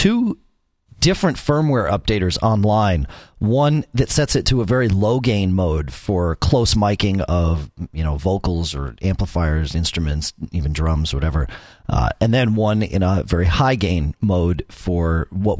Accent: American